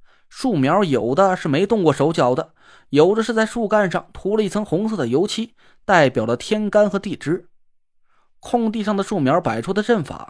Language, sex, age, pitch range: Chinese, male, 20-39, 170-225 Hz